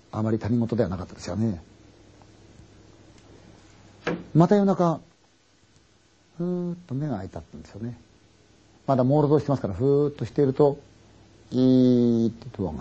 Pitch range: 105-130 Hz